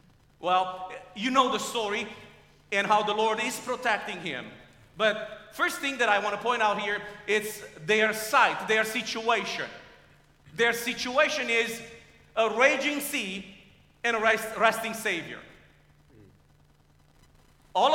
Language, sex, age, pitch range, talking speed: English, male, 40-59, 200-245 Hz, 130 wpm